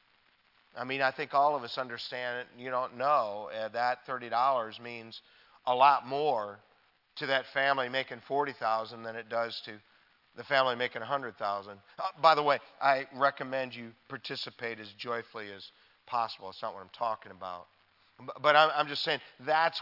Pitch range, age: 120-145 Hz, 40-59